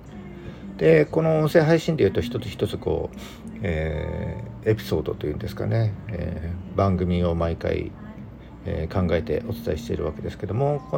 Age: 50-69